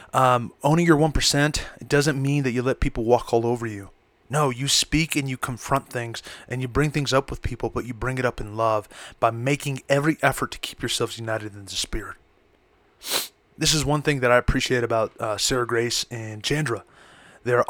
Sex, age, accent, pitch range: male, 20-39, American, 115-140 Hz